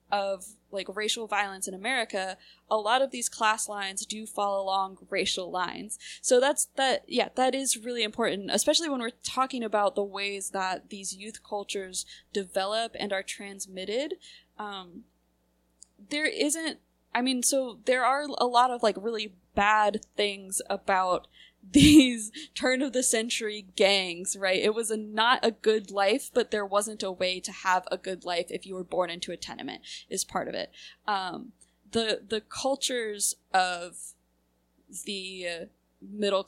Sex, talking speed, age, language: female, 160 wpm, 20-39, English